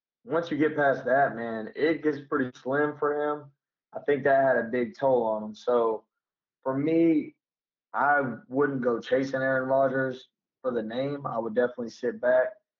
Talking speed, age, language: 180 wpm, 20-39, English